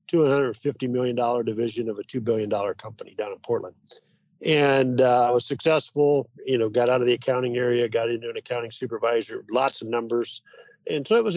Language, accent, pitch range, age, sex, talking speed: English, American, 120-150 Hz, 50-69, male, 185 wpm